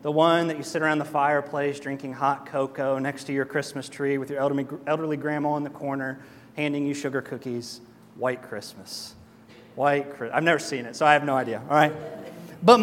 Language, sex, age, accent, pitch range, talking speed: English, male, 30-49, American, 150-210 Hz, 200 wpm